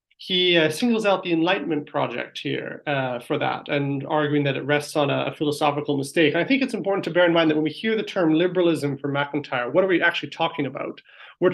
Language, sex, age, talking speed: English, male, 30-49, 235 wpm